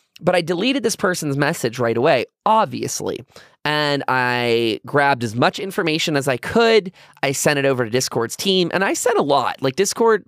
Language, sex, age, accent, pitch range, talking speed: English, male, 20-39, American, 125-180 Hz, 185 wpm